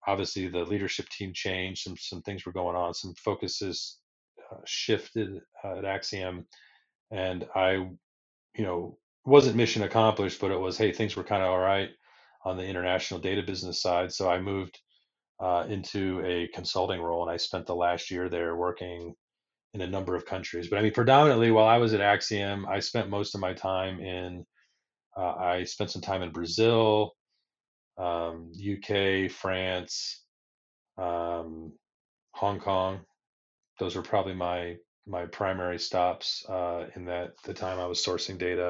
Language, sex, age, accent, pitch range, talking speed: English, male, 30-49, American, 90-105 Hz, 165 wpm